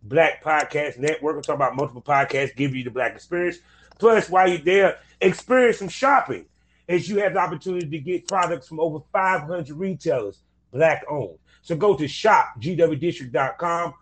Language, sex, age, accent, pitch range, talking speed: English, male, 30-49, American, 140-185 Hz, 160 wpm